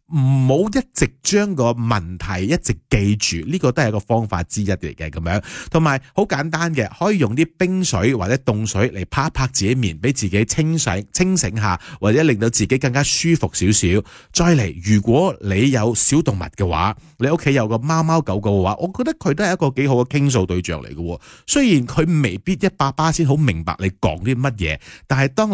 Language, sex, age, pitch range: Chinese, male, 30-49, 100-160 Hz